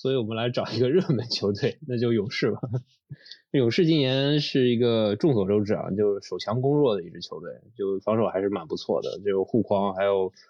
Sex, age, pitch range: male, 20-39, 100-125 Hz